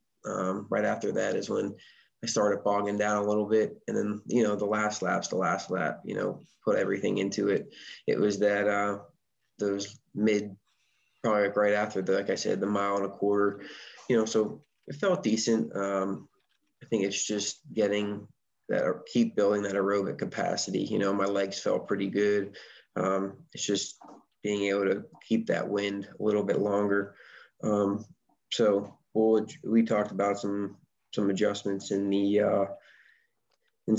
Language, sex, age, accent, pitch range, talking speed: English, male, 20-39, American, 100-105 Hz, 175 wpm